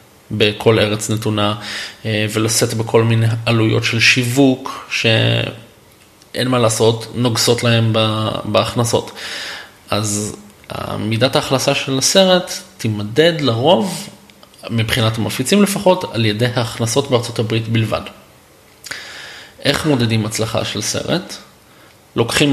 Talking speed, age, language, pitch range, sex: 100 wpm, 20-39, Hebrew, 110-125 Hz, male